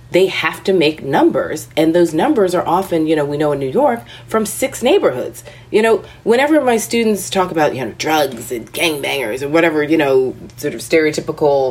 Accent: American